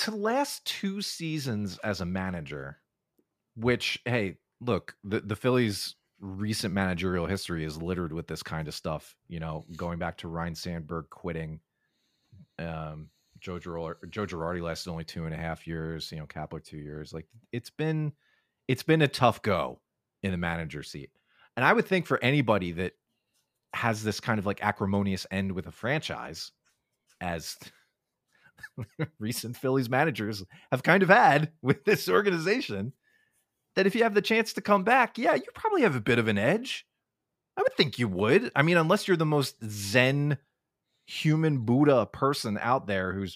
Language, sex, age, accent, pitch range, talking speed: English, male, 30-49, American, 90-145 Hz, 170 wpm